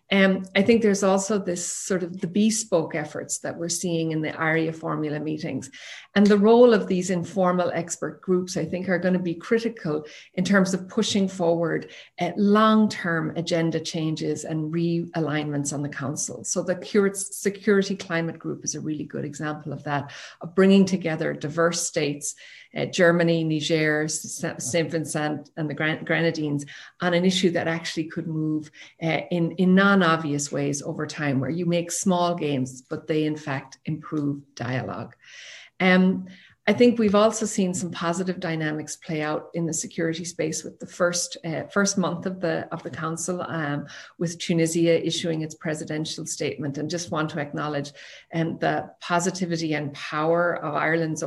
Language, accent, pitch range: English, Irish, 155-185 Hz